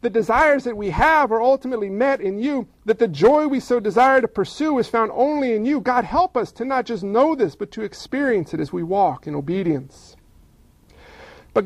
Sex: male